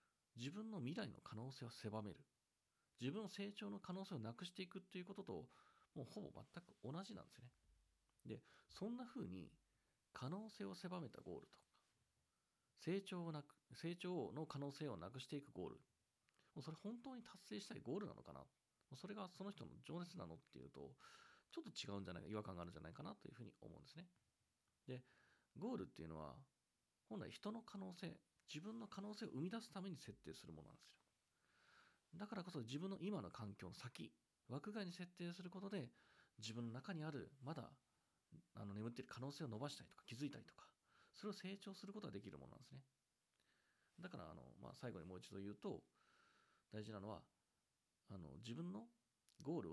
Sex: male